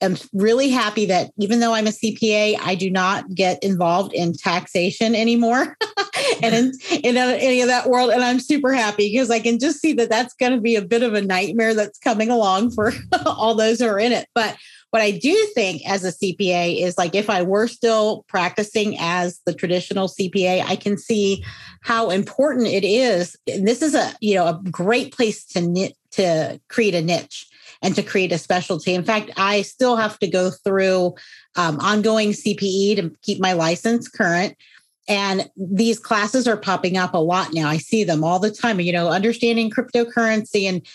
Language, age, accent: English, 40-59, American